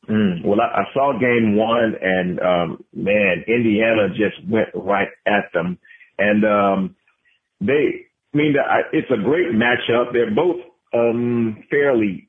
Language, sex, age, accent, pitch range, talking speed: English, male, 40-59, American, 110-140 Hz, 140 wpm